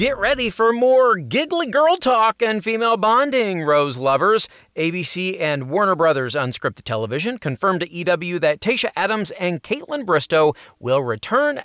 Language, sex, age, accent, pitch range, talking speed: English, male, 30-49, American, 135-205 Hz, 150 wpm